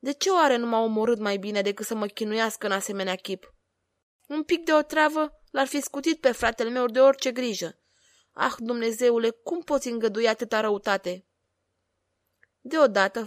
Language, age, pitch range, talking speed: Romanian, 20-39, 200-250 Hz, 165 wpm